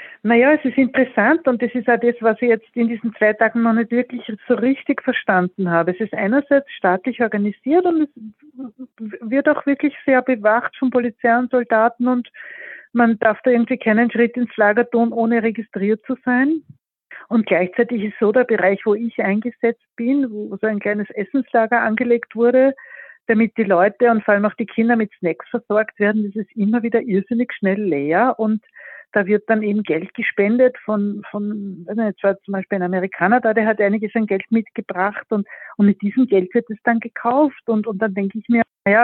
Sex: female